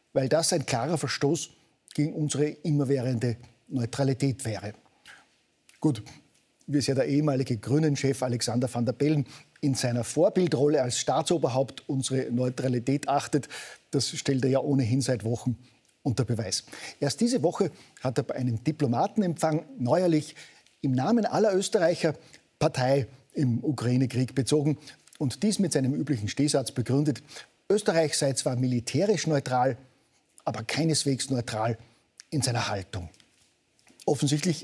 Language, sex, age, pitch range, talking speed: German, male, 50-69, 125-155 Hz, 125 wpm